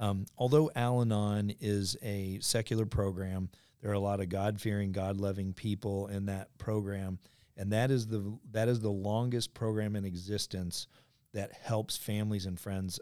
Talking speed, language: 155 wpm, English